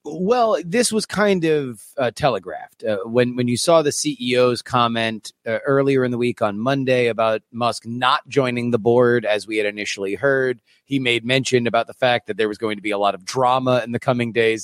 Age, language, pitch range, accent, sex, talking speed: 30-49, English, 110-140 Hz, American, male, 215 wpm